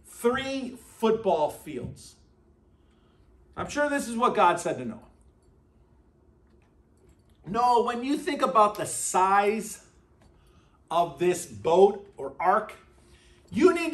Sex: male